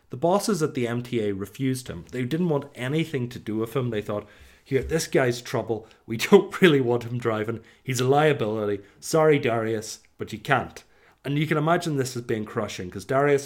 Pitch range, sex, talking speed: 105-140 Hz, male, 200 wpm